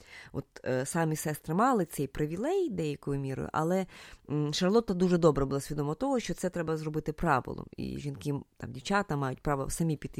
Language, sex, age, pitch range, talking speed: Ukrainian, female, 20-39, 150-200 Hz, 165 wpm